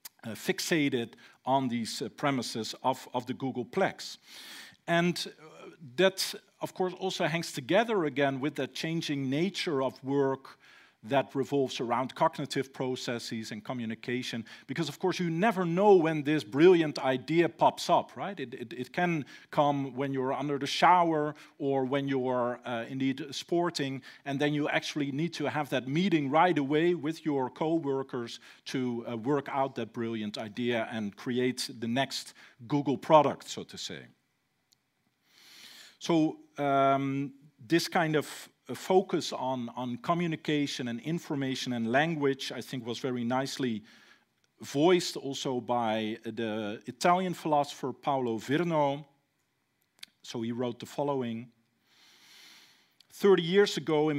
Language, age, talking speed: English, 50-69, 140 wpm